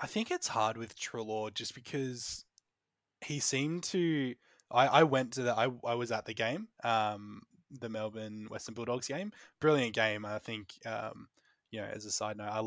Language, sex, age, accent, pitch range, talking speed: English, male, 20-39, Australian, 105-120 Hz, 190 wpm